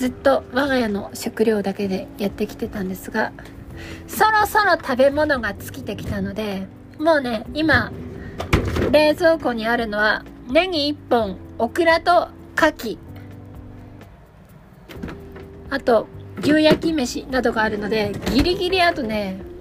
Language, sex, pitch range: Japanese, female, 210-315 Hz